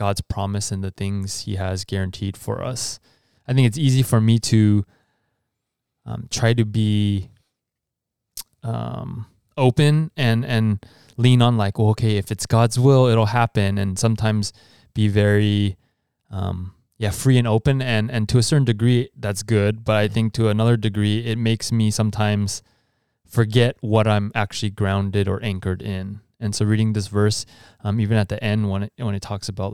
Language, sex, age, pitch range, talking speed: English, male, 20-39, 100-120 Hz, 175 wpm